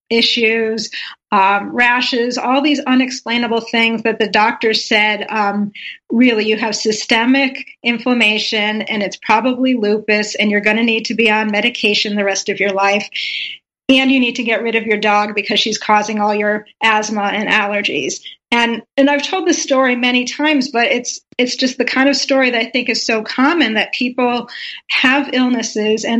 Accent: American